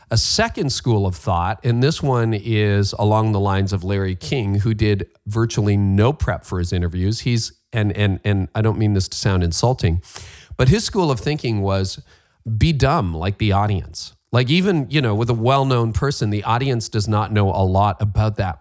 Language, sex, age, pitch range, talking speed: English, male, 40-59, 95-130 Hz, 200 wpm